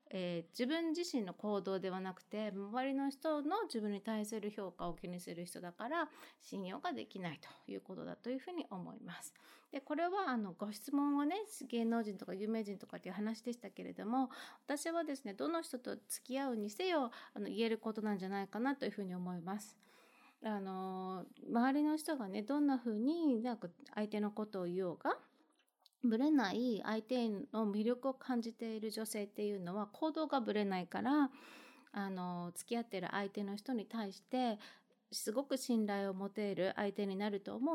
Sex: female